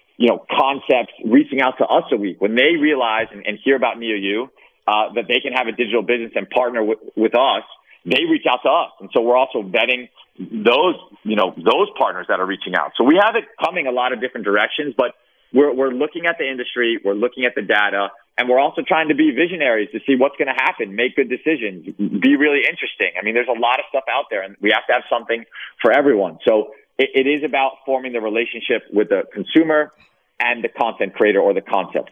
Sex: male